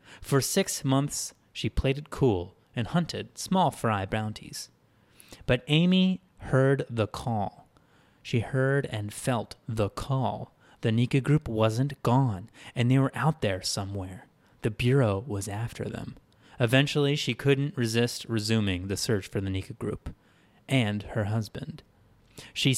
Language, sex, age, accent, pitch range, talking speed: English, male, 30-49, American, 105-135 Hz, 140 wpm